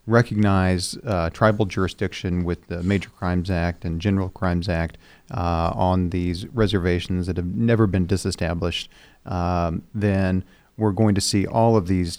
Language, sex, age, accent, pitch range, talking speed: English, male, 40-59, American, 90-105 Hz, 155 wpm